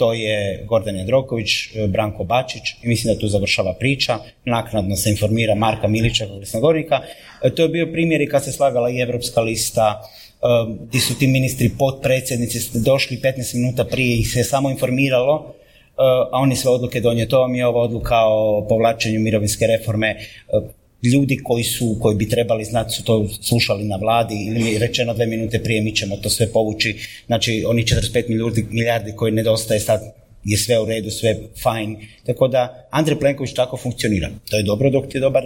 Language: Croatian